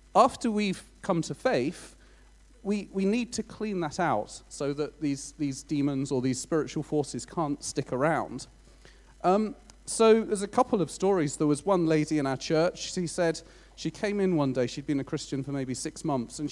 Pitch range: 140-190 Hz